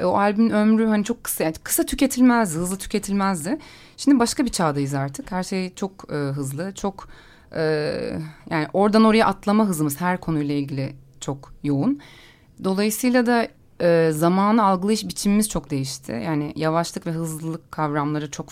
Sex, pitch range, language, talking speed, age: female, 155-215 Hz, Turkish, 150 wpm, 30-49